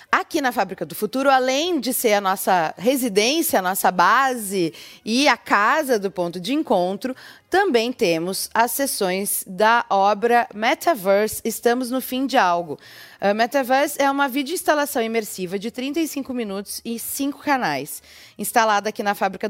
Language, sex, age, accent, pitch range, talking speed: Portuguese, female, 20-39, Brazilian, 200-265 Hz, 155 wpm